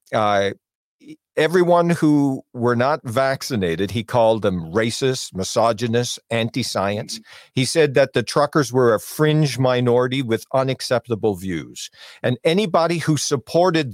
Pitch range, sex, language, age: 115-145 Hz, male, English, 50-69